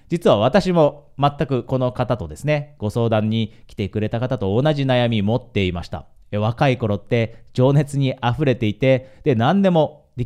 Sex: male